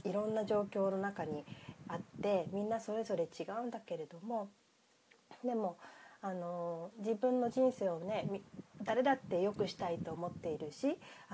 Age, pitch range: 30-49, 170-230 Hz